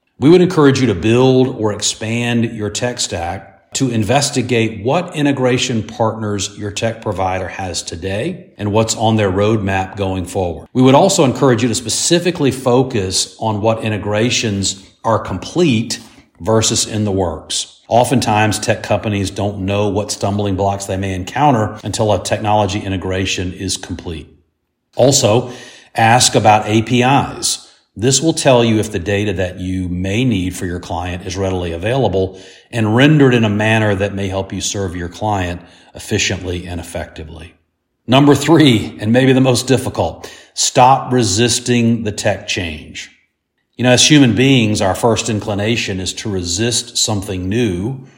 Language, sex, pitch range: English, male, 95-120 Hz